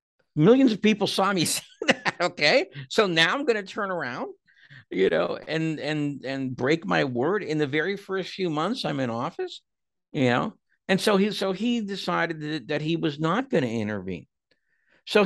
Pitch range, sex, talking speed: 120-175 Hz, male, 195 wpm